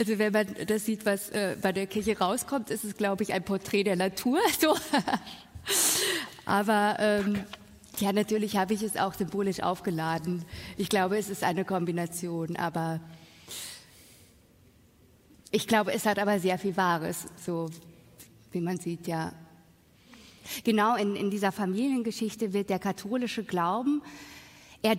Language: German